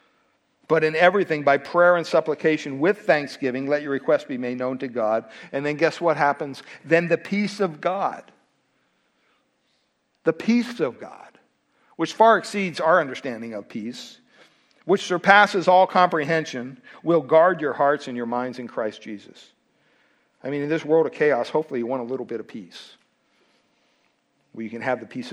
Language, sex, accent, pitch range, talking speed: English, male, American, 130-175 Hz, 170 wpm